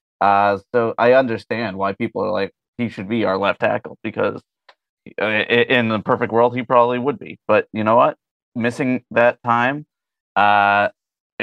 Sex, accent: male, American